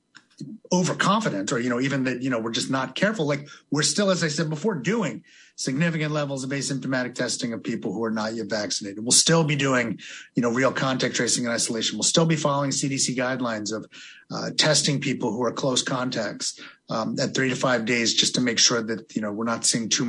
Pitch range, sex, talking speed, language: 130-165 Hz, male, 220 wpm, English